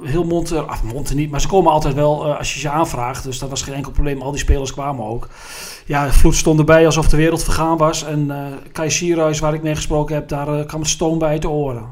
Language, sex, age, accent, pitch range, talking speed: Dutch, male, 40-59, Dutch, 150-185 Hz, 260 wpm